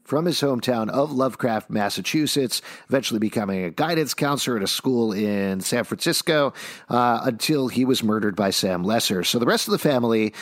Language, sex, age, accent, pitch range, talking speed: English, male, 50-69, American, 115-160 Hz, 180 wpm